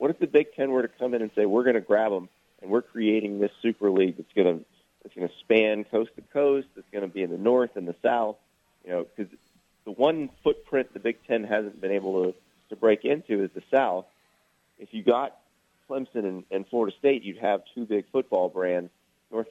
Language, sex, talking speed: English, male, 235 wpm